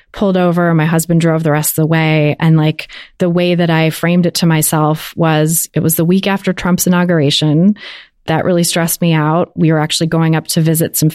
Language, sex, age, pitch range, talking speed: English, female, 30-49, 160-180 Hz, 220 wpm